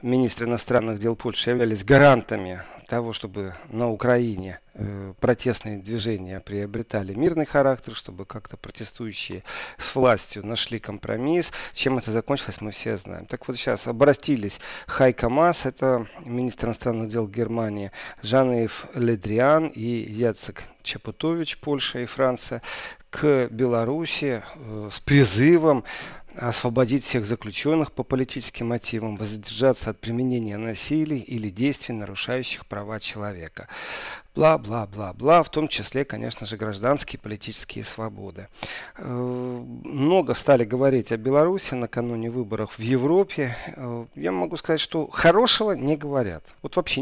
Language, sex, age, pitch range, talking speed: Russian, male, 40-59, 110-135 Hz, 120 wpm